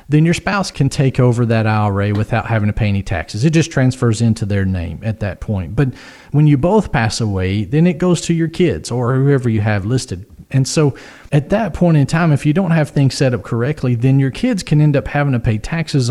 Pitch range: 115-150 Hz